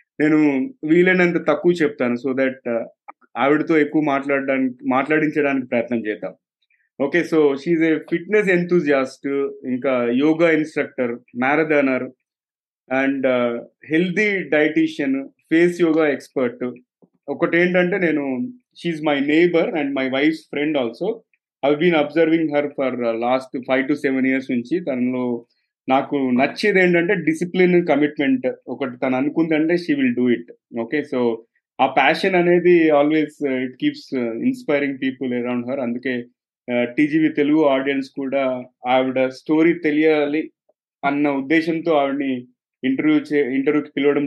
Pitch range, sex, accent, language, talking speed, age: 130-160 Hz, male, native, Telugu, 120 wpm, 30-49